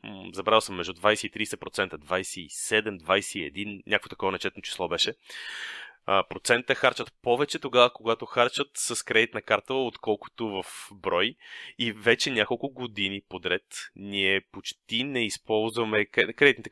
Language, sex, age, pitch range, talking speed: Bulgarian, male, 30-49, 105-140 Hz, 125 wpm